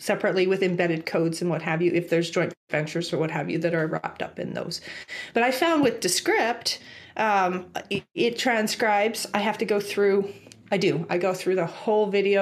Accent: American